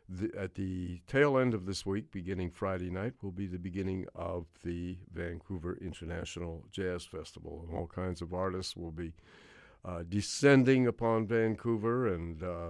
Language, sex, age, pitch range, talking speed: English, male, 50-69, 85-105 Hz, 155 wpm